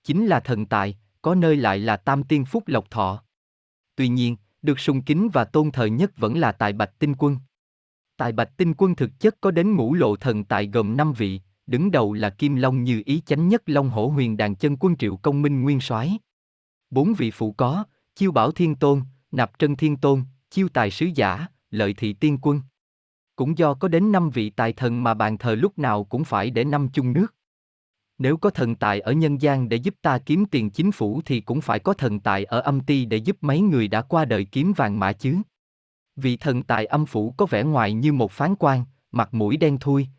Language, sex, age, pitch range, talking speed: Vietnamese, male, 20-39, 110-155 Hz, 225 wpm